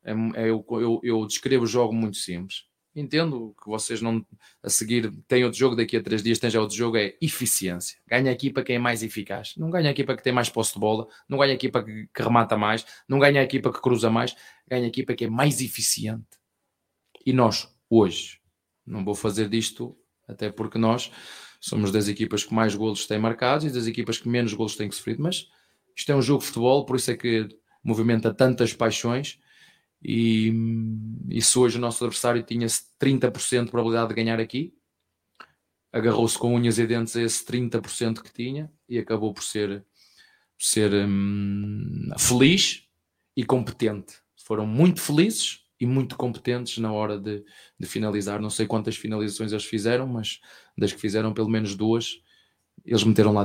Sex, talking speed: male, 185 wpm